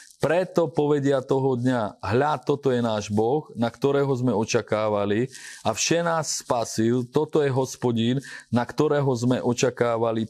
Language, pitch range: Slovak, 110-135 Hz